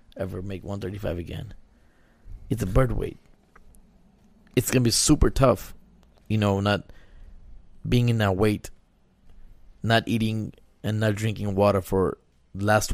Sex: male